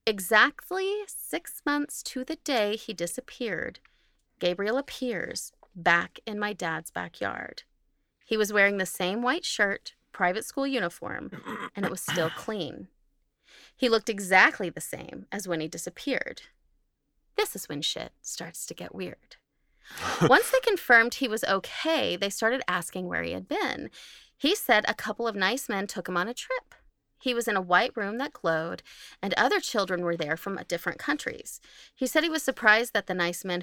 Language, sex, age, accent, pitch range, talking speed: English, female, 30-49, American, 185-260 Hz, 175 wpm